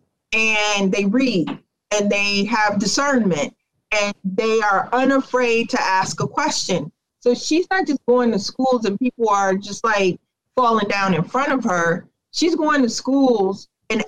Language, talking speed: English, 160 wpm